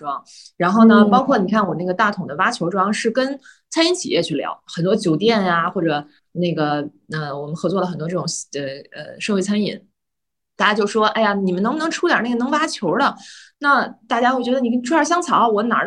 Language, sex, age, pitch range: Chinese, female, 20-39, 170-230 Hz